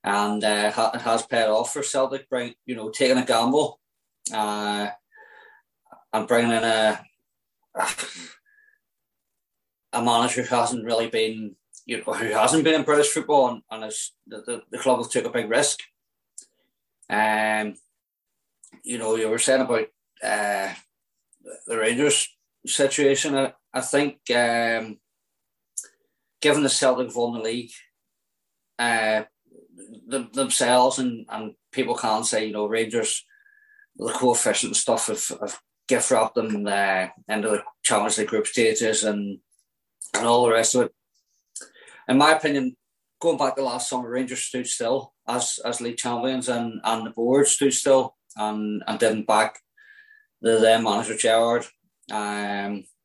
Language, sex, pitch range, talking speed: English, male, 110-135 Hz, 150 wpm